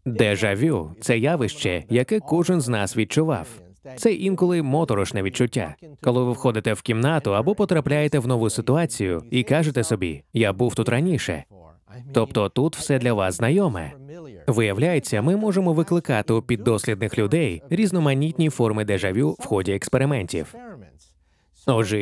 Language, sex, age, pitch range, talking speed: Ukrainian, male, 20-39, 105-160 Hz, 135 wpm